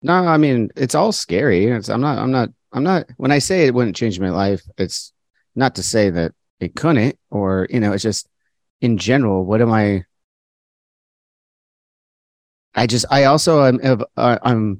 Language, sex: English, male